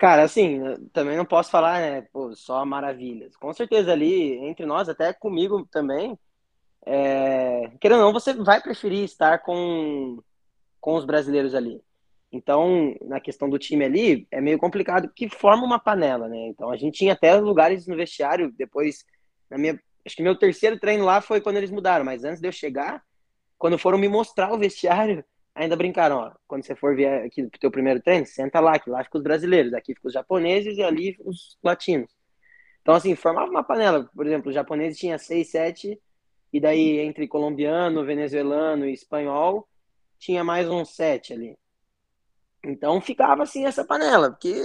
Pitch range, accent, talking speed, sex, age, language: 145-200 Hz, Brazilian, 180 wpm, male, 20-39, Portuguese